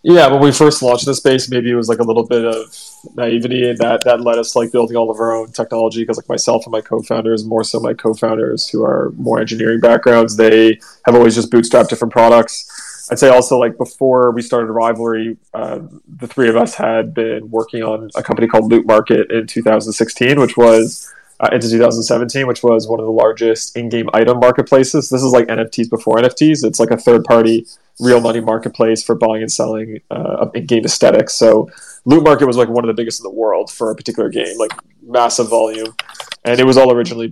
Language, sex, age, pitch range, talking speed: English, male, 20-39, 115-125 Hz, 220 wpm